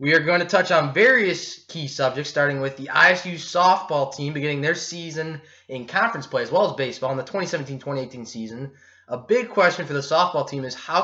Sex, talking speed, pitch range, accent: male, 205 wpm, 140-175 Hz, American